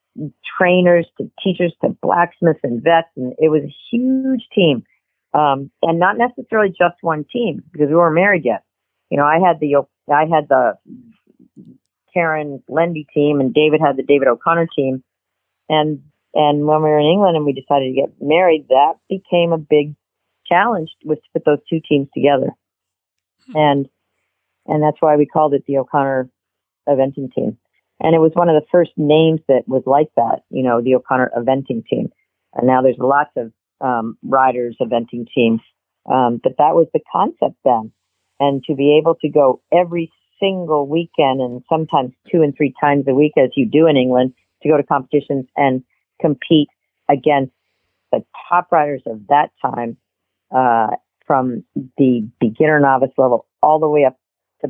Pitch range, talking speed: 130-160 Hz, 175 wpm